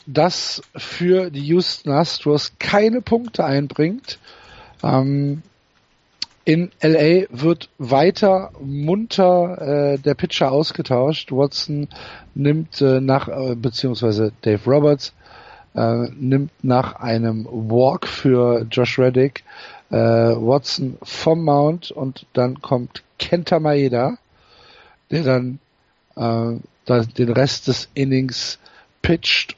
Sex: male